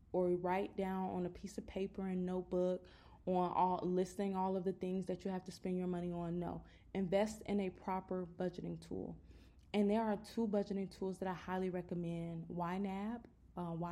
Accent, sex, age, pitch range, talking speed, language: American, female, 20-39, 180-220 Hz, 190 wpm, English